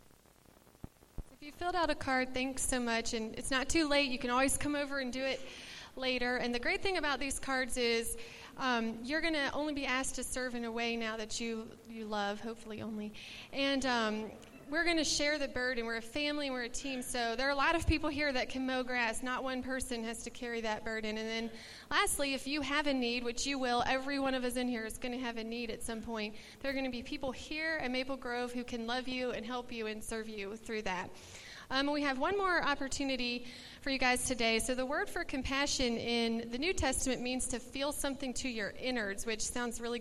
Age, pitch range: 30-49, 235-280 Hz